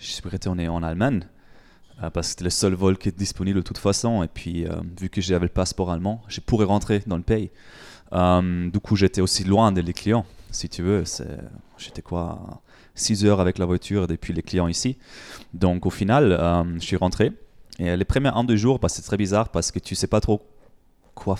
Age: 20-39